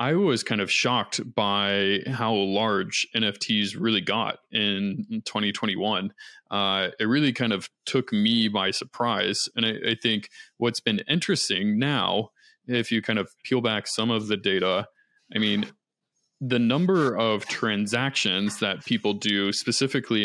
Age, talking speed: 20-39, 150 wpm